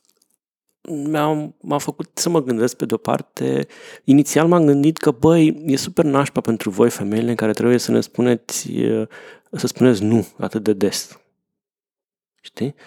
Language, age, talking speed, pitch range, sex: Romanian, 30-49, 150 wpm, 110-145 Hz, male